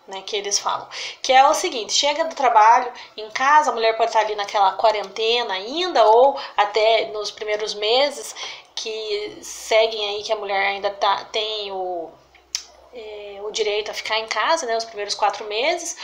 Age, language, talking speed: 20-39, Portuguese, 170 wpm